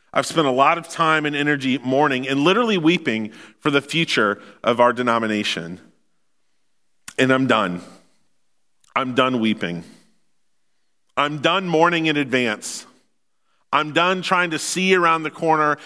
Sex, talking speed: male, 140 wpm